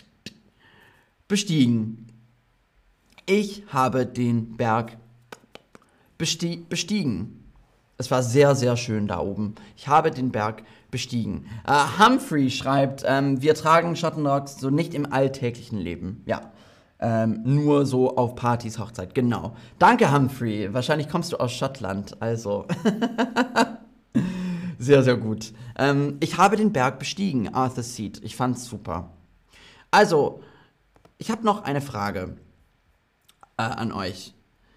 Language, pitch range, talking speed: German, 110-145 Hz, 115 wpm